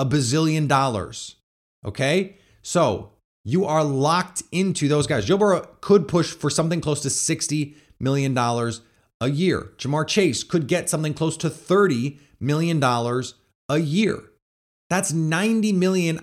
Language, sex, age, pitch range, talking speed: English, male, 30-49, 115-160 Hz, 135 wpm